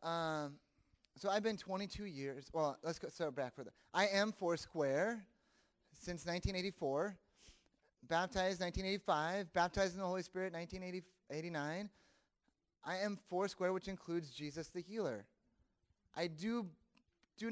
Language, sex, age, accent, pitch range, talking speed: English, male, 30-49, American, 135-190 Hz, 125 wpm